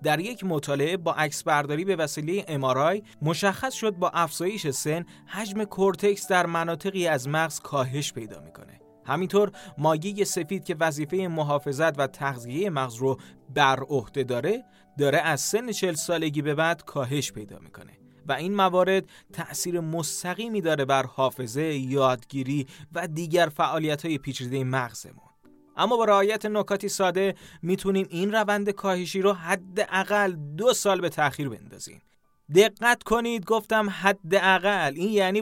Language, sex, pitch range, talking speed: Persian, male, 145-200 Hz, 140 wpm